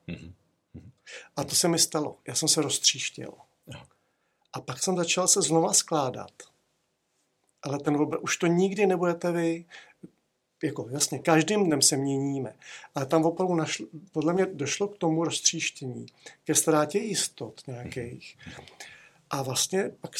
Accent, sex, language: native, male, Czech